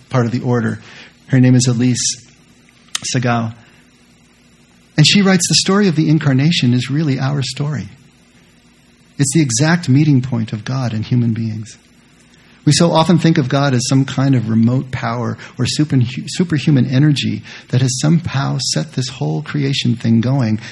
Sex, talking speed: male, 160 wpm